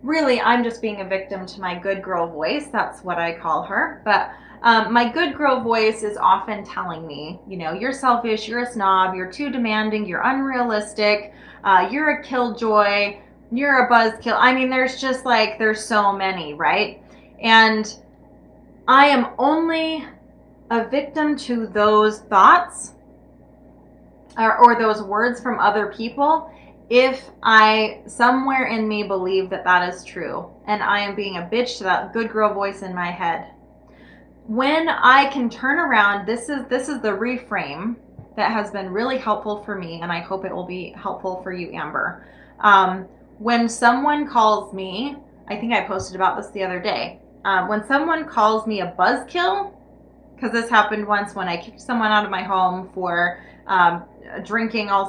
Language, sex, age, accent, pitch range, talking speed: English, female, 20-39, American, 190-245 Hz, 175 wpm